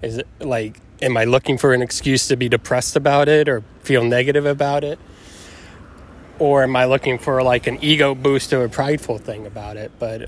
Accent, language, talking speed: American, English, 205 wpm